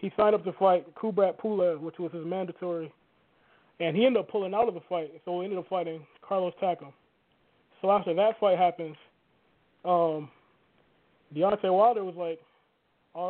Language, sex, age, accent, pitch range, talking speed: English, male, 20-39, American, 175-210 Hz, 165 wpm